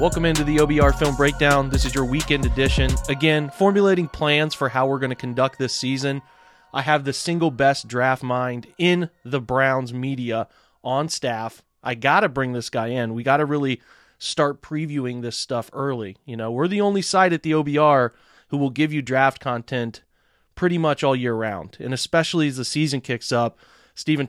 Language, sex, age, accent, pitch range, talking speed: English, male, 30-49, American, 120-145 Hz, 195 wpm